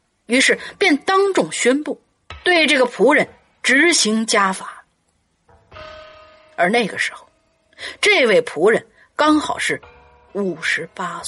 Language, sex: Chinese, female